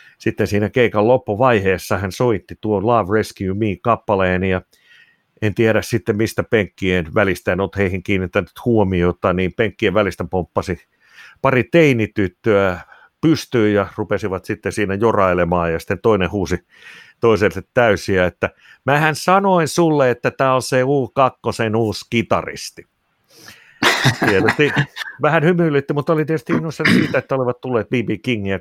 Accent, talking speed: native, 140 wpm